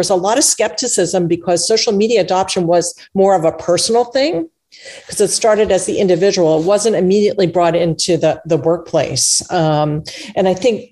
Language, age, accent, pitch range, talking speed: English, 50-69, American, 175-220 Hz, 180 wpm